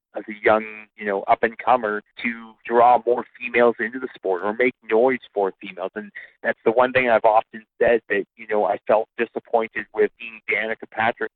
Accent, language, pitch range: American, English, 100-115 Hz